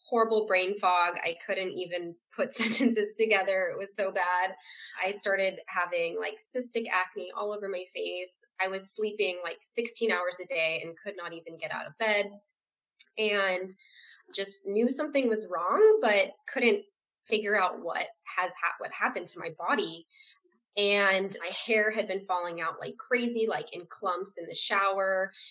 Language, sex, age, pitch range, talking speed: English, female, 20-39, 185-235 Hz, 170 wpm